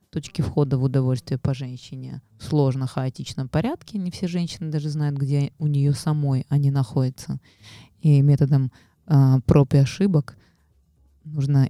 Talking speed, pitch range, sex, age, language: 135 wpm, 130-170 Hz, female, 20-39, Russian